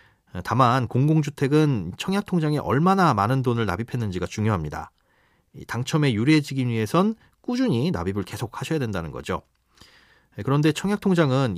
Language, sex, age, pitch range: Korean, male, 30-49, 110-165 Hz